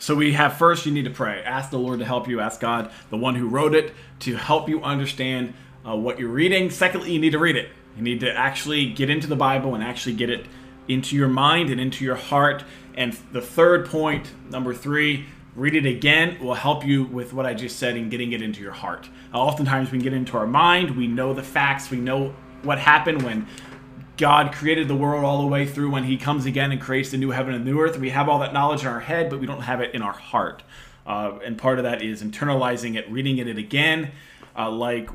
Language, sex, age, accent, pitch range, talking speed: English, male, 20-39, American, 125-150 Hz, 240 wpm